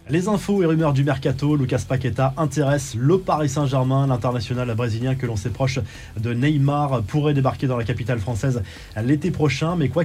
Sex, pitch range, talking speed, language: male, 125-150 Hz, 175 wpm, French